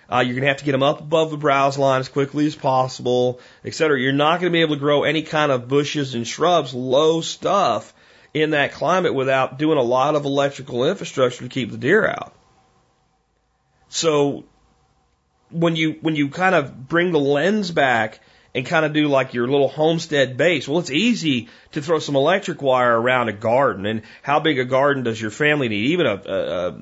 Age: 40-59